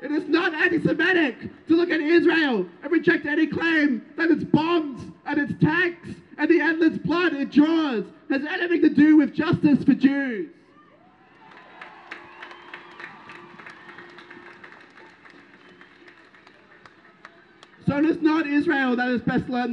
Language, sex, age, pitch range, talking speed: English, male, 30-49, 270-325 Hz, 125 wpm